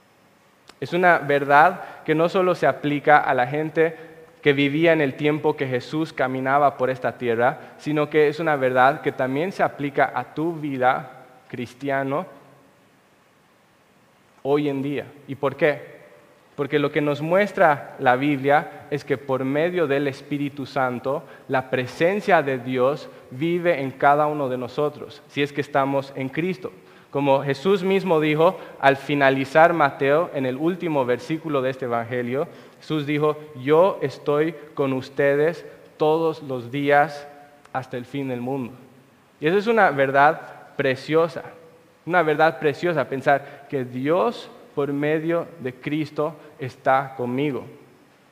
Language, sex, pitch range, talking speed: Spanish, male, 135-155 Hz, 145 wpm